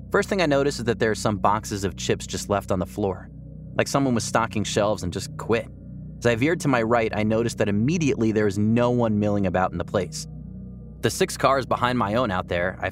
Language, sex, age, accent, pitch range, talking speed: English, male, 30-49, American, 95-125 Hz, 245 wpm